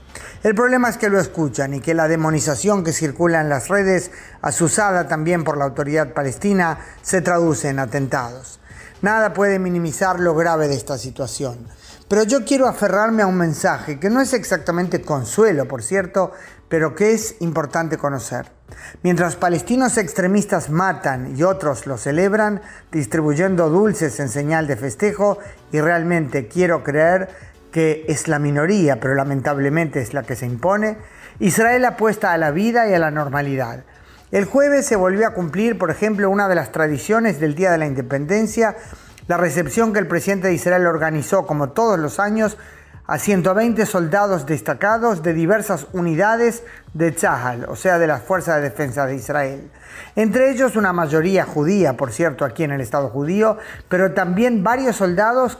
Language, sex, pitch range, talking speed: Spanish, male, 150-205 Hz, 165 wpm